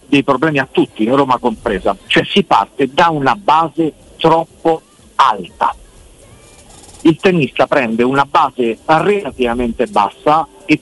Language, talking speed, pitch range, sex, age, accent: Italian, 130 wpm, 130-175 Hz, male, 50-69, native